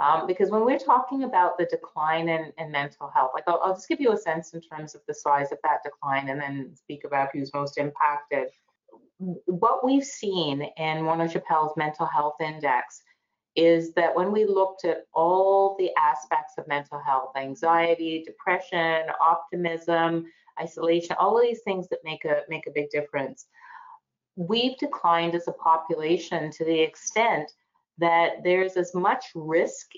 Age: 30-49